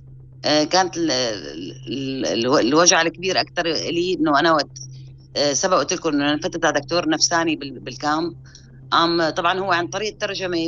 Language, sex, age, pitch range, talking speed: Arabic, female, 30-49, 140-175 Hz, 130 wpm